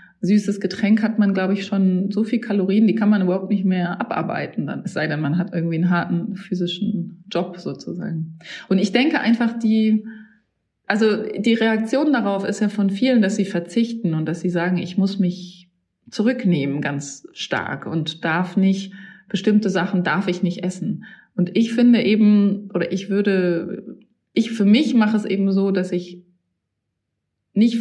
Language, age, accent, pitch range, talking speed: German, 30-49, German, 185-220 Hz, 175 wpm